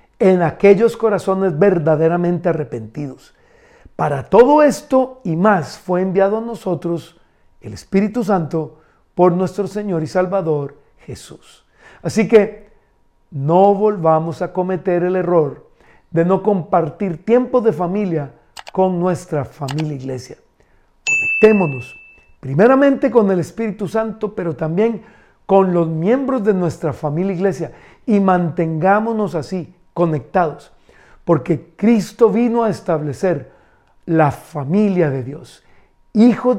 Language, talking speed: Spanish, 115 wpm